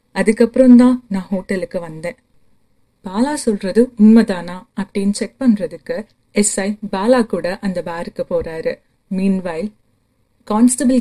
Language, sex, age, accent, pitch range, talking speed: Tamil, female, 30-49, native, 175-230 Hz, 105 wpm